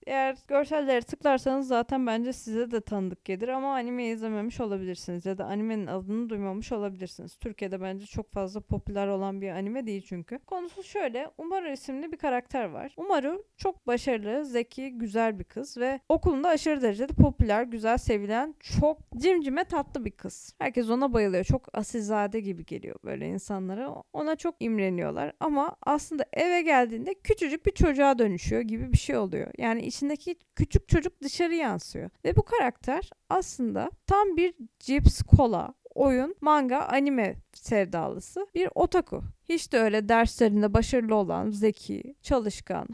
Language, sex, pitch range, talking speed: Turkish, female, 215-290 Hz, 150 wpm